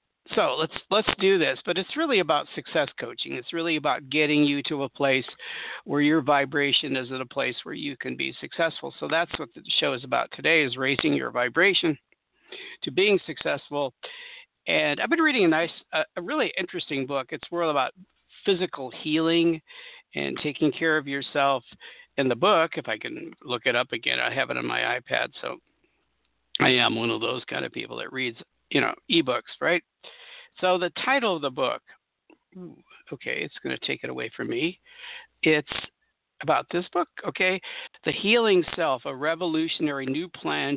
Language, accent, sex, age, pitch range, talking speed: English, American, male, 50-69, 135-185 Hz, 185 wpm